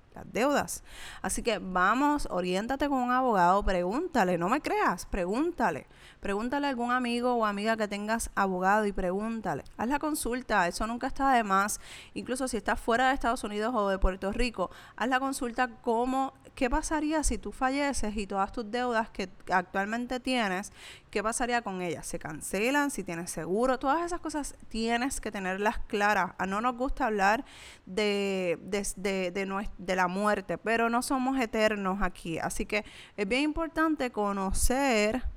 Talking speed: 170 wpm